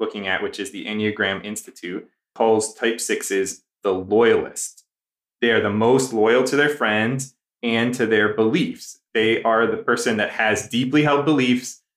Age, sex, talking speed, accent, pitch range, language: 20-39, male, 165 wpm, American, 105-130 Hz, English